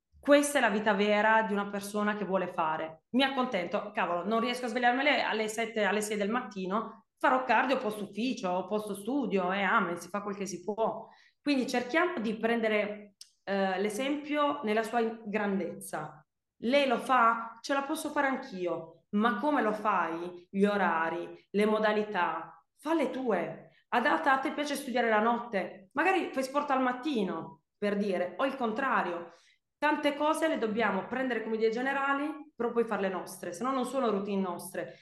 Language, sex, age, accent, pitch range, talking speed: Italian, female, 20-39, native, 190-245 Hz, 175 wpm